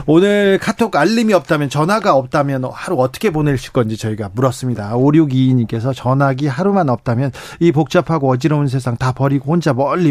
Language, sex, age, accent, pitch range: Korean, male, 40-59, native, 135-185 Hz